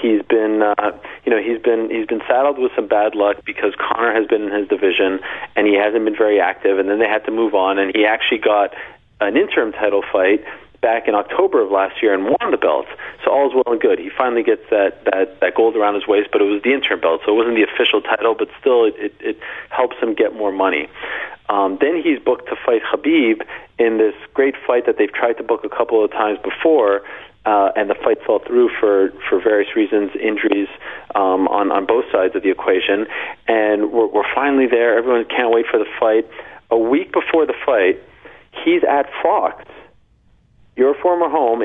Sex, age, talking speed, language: male, 40-59, 220 wpm, English